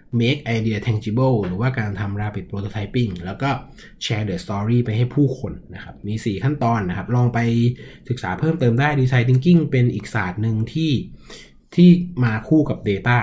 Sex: male